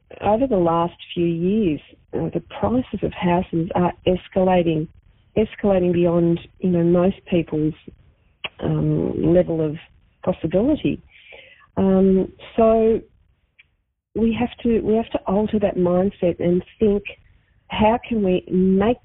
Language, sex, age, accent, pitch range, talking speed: English, female, 40-59, Australian, 170-210 Hz, 125 wpm